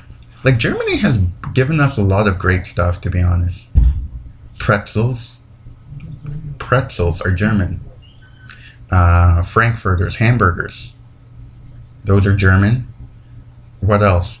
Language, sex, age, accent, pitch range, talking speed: English, male, 30-49, American, 95-120 Hz, 105 wpm